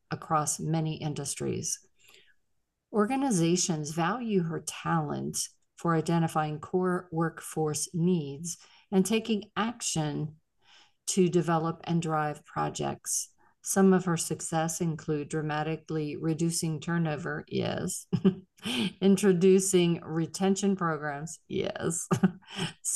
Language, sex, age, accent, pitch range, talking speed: English, female, 50-69, American, 155-190 Hz, 85 wpm